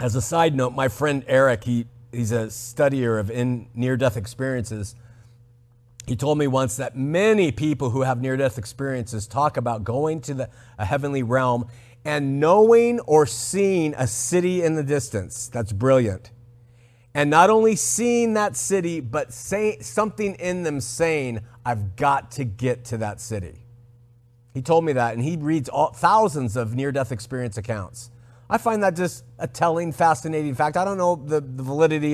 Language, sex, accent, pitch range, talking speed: English, male, American, 120-165 Hz, 160 wpm